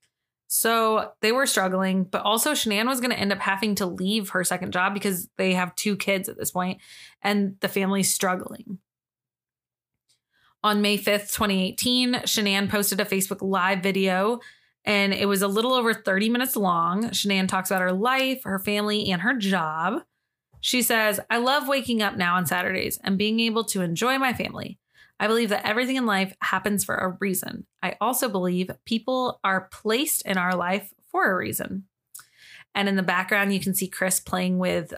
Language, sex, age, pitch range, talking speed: English, female, 20-39, 190-225 Hz, 185 wpm